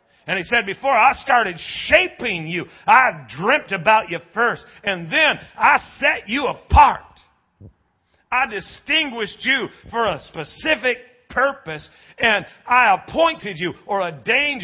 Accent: American